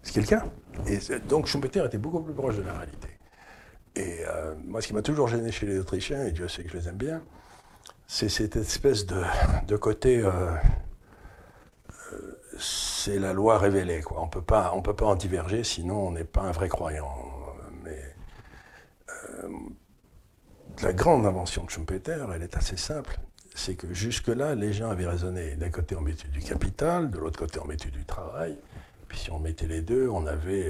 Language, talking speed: French, 190 wpm